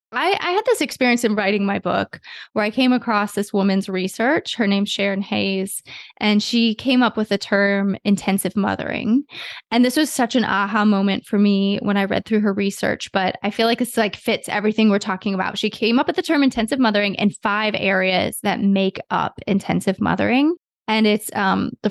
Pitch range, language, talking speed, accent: 195-225 Hz, English, 205 wpm, American